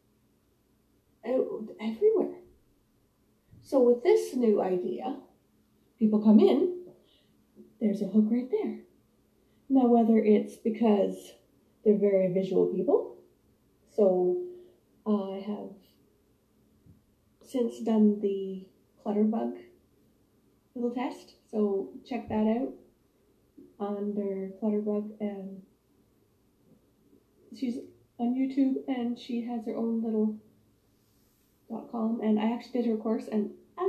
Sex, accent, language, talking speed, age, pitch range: female, American, English, 100 wpm, 30-49, 200-270 Hz